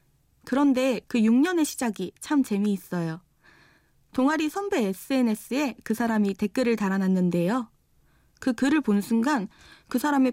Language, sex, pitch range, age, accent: Korean, female, 195-275 Hz, 20-39, native